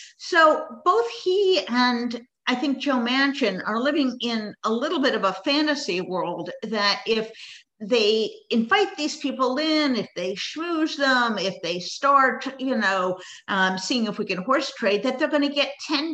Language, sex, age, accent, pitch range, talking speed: English, female, 50-69, American, 195-270 Hz, 175 wpm